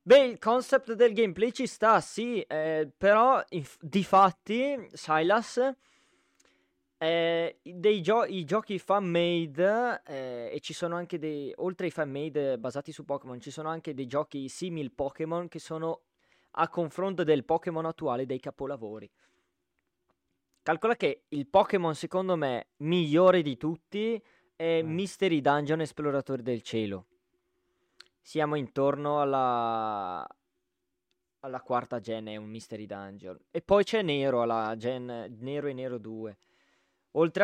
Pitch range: 125-175 Hz